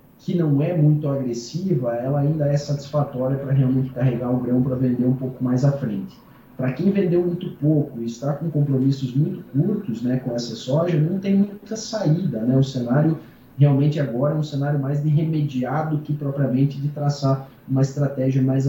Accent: Brazilian